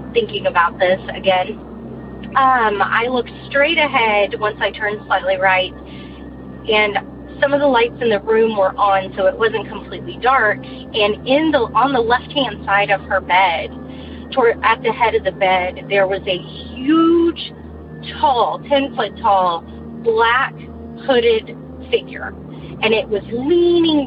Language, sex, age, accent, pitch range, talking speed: English, female, 30-49, American, 195-265 Hz, 145 wpm